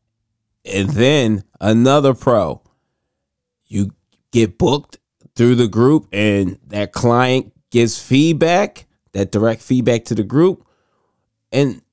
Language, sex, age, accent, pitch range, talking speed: English, male, 20-39, American, 105-135 Hz, 110 wpm